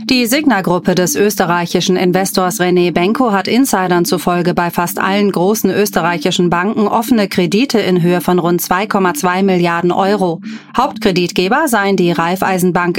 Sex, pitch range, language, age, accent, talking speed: female, 180-215 Hz, German, 30-49, German, 140 wpm